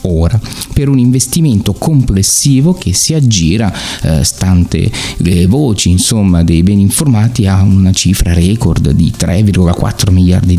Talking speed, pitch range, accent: 130 wpm, 90-115 Hz, native